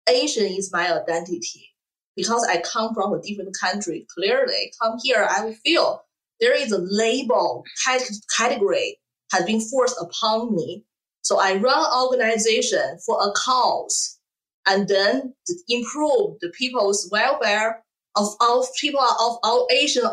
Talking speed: 135 wpm